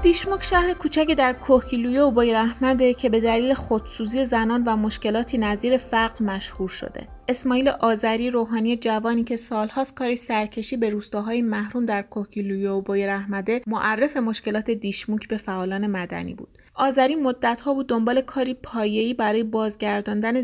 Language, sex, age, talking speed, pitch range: Persian, female, 30-49, 145 wpm, 210-245 Hz